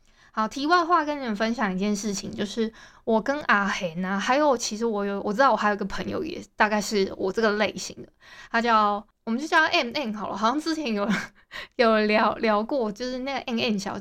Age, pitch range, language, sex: 20-39, 210-275 Hz, Chinese, female